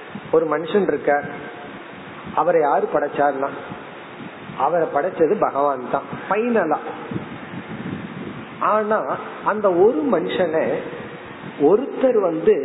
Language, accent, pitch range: Tamil, native, 160-255 Hz